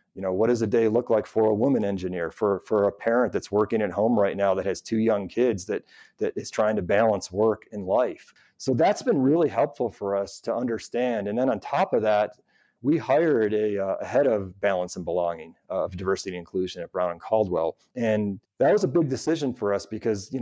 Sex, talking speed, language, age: male, 235 wpm, English, 30-49